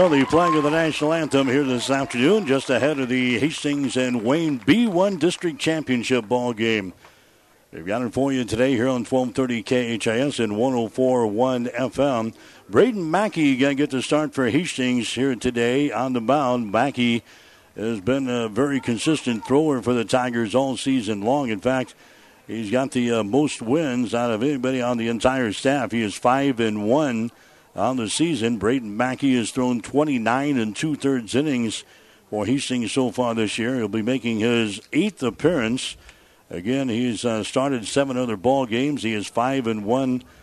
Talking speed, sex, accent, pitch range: 175 wpm, male, American, 115-135 Hz